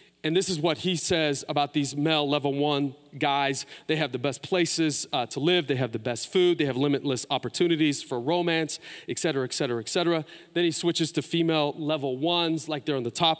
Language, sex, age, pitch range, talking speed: English, male, 30-49, 140-175 Hz, 220 wpm